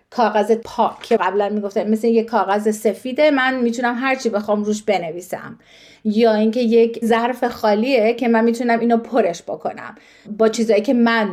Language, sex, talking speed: Persian, female, 160 wpm